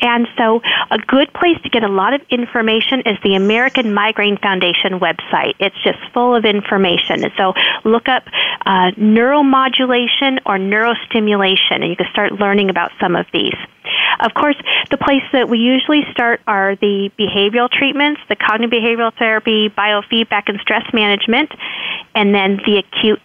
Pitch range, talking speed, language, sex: 200-255 Hz, 160 wpm, English, female